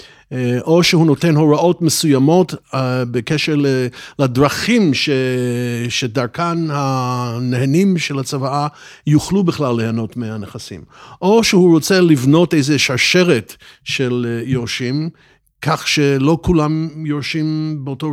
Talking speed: 95 wpm